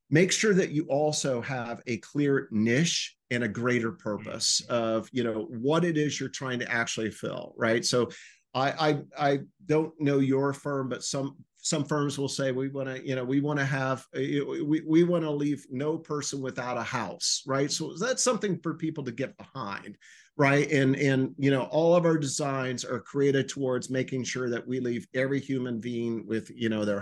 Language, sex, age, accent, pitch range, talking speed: English, male, 40-59, American, 120-150 Hz, 200 wpm